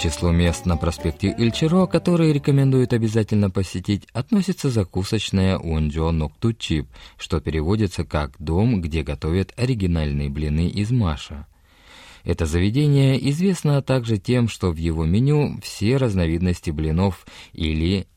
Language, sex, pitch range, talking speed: Russian, male, 80-120 Hz, 120 wpm